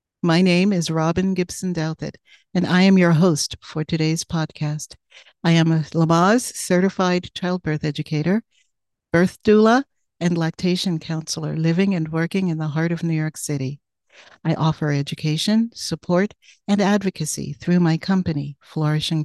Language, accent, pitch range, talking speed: English, American, 160-185 Hz, 135 wpm